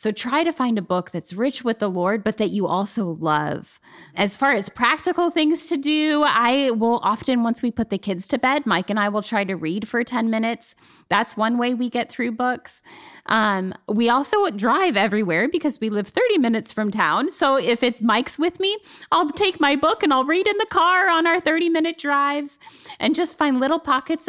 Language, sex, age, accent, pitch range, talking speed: English, female, 10-29, American, 200-275 Hz, 215 wpm